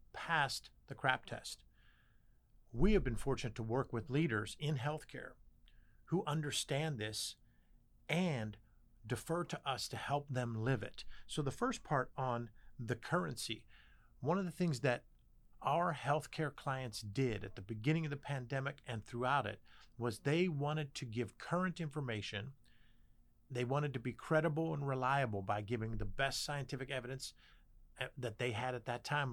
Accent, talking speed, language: American, 160 wpm, English